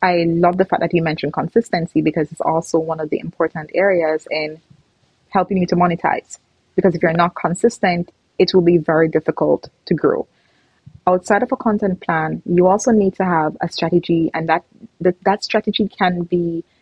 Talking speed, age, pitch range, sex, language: 185 wpm, 20-39, 160-195 Hz, female, English